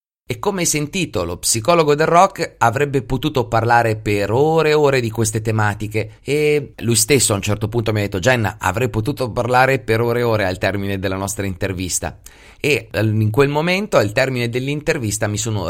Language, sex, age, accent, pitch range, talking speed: Italian, male, 30-49, native, 100-135 Hz, 190 wpm